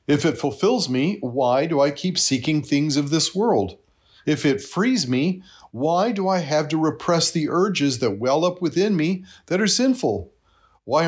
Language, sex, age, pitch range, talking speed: English, male, 40-59, 120-180 Hz, 185 wpm